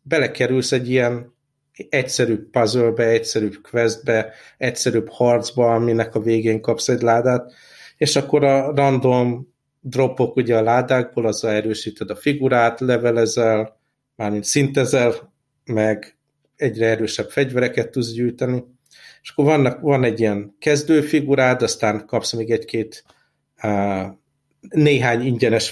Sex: male